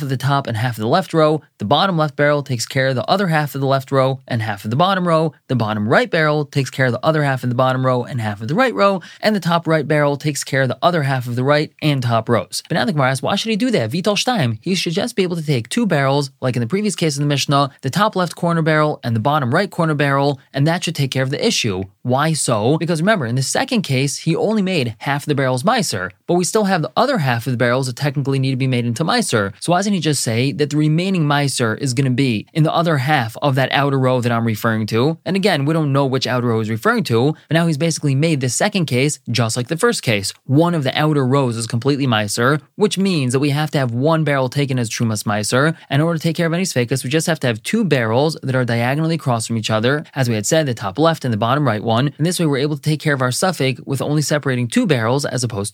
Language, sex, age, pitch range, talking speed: English, male, 20-39, 125-160 Hz, 290 wpm